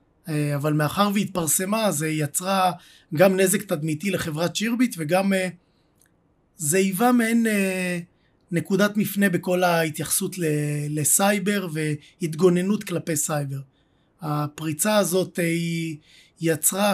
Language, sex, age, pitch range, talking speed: Hebrew, male, 30-49, 165-210 Hz, 90 wpm